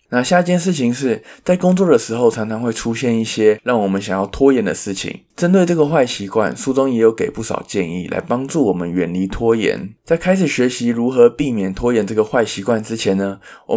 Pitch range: 100-135 Hz